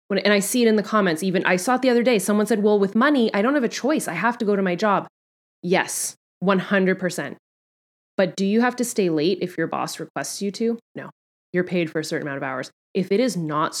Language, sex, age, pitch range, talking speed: English, female, 20-39, 175-215 Hz, 255 wpm